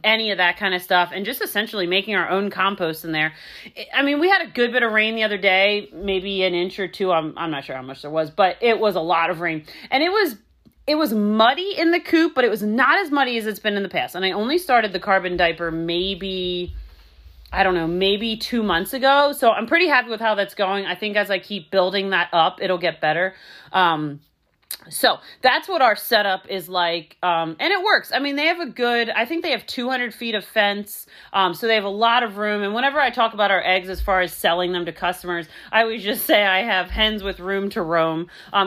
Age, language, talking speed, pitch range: 30-49, English, 250 wpm, 175-225 Hz